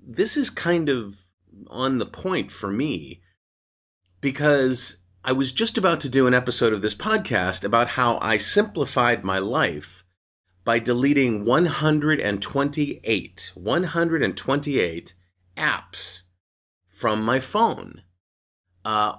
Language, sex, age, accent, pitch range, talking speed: English, male, 30-49, American, 90-130 Hz, 115 wpm